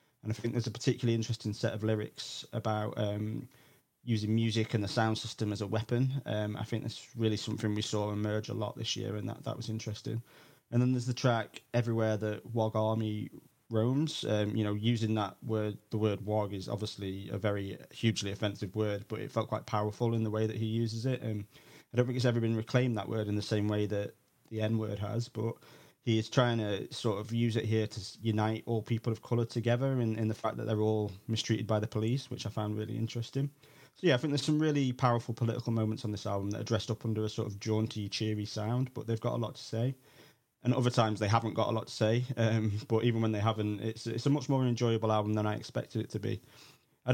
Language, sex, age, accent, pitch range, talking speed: English, male, 20-39, British, 110-120 Hz, 240 wpm